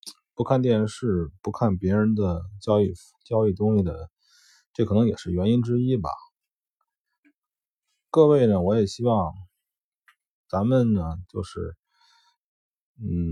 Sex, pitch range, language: male, 95-125 Hz, Chinese